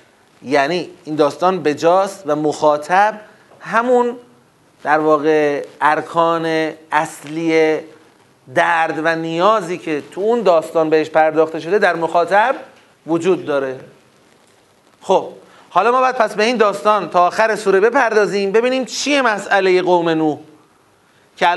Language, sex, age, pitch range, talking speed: Persian, male, 40-59, 150-200 Hz, 120 wpm